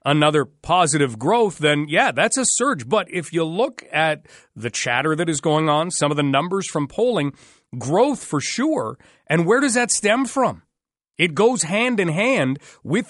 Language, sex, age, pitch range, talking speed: English, male, 40-59, 165-230 Hz, 185 wpm